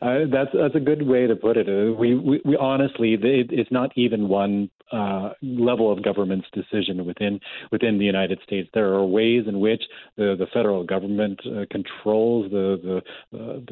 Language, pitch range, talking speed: English, 100-120 Hz, 190 wpm